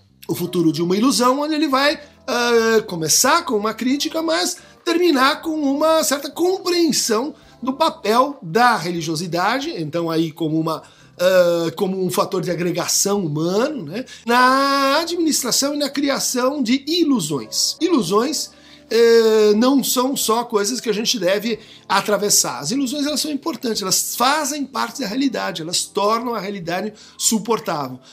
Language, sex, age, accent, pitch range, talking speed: Portuguese, male, 50-69, Brazilian, 185-270 Hz, 135 wpm